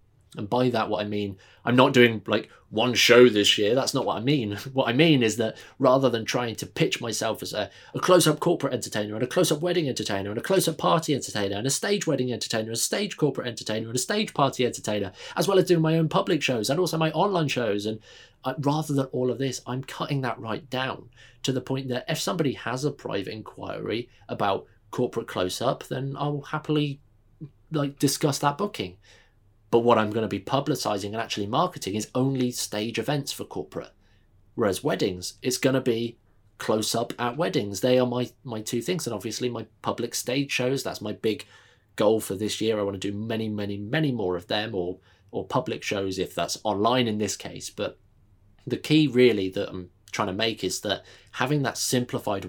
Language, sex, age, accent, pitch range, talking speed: English, male, 20-39, British, 105-135 Hz, 215 wpm